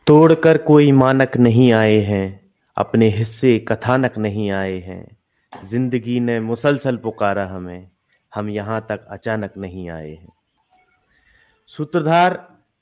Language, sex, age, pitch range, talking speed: Hindi, male, 30-49, 115-155 Hz, 115 wpm